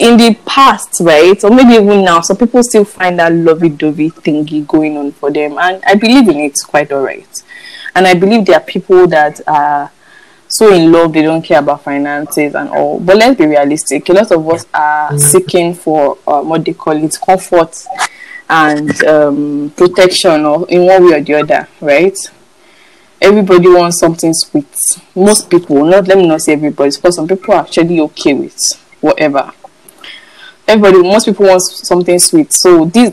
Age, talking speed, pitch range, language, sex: 10-29, 185 wpm, 150-200 Hz, English, female